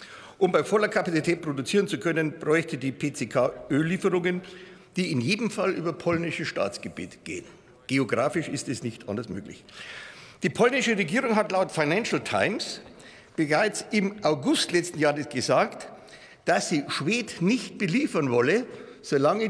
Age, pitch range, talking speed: 60-79, 145-210 Hz, 140 wpm